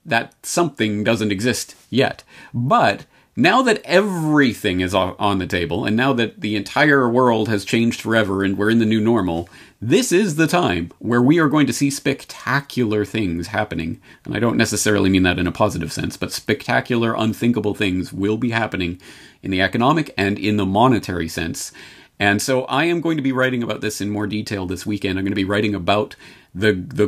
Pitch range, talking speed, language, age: 95-120 Hz, 195 wpm, English, 40-59